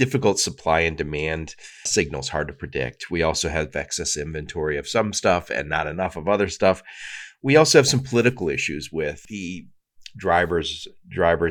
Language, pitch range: English, 80-115 Hz